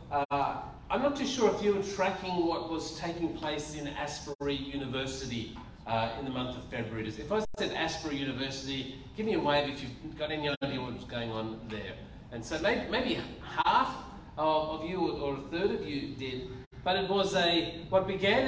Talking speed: 195 wpm